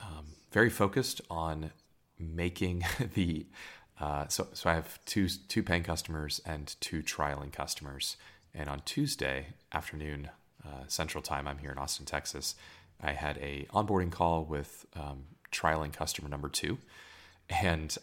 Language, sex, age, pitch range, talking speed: English, male, 30-49, 70-85 Hz, 145 wpm